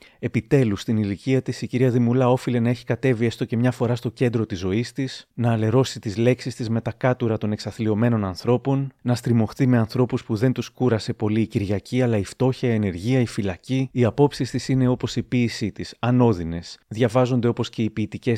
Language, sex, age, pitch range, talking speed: Greek, male, 30-49, 110-125 Hz, 205 wpm